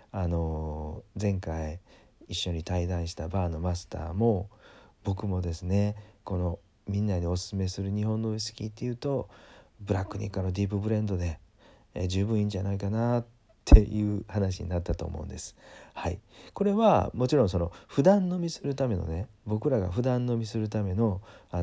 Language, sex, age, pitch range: Japanese, male, 40-59, 90-110 Hz